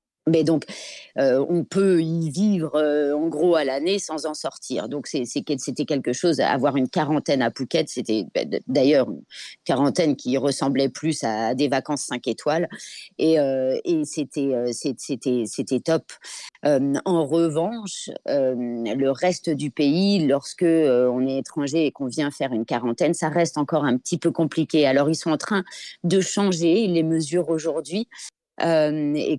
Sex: female